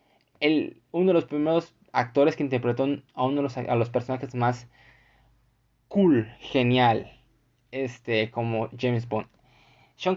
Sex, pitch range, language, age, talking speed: male, 120-150 Hz, Spanish, 20-39, 135 wpm